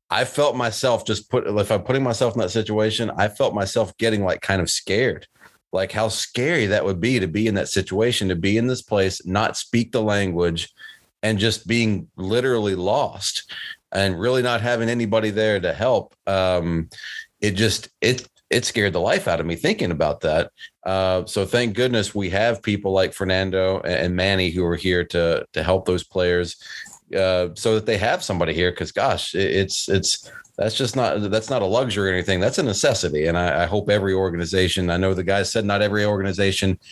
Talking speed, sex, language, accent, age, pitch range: 200 wpm, male, English, American, 30-49, 90-110 Hz